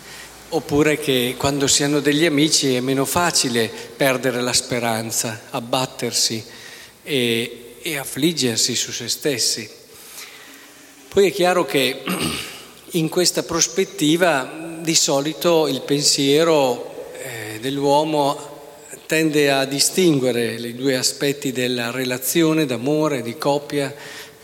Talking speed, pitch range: 105 wpm, 125-155 Hz